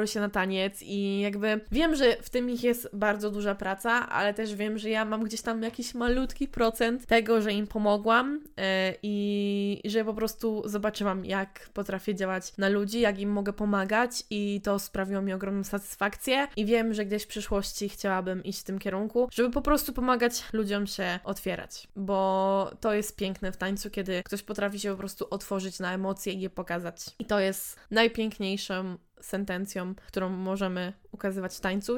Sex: female